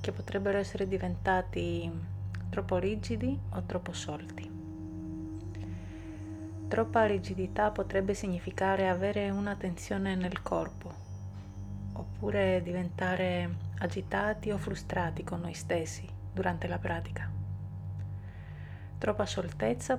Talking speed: 95 wpm